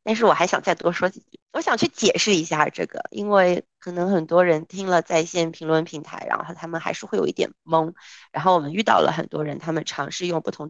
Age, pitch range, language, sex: 30-49, 160-195 Hz, Chinese, female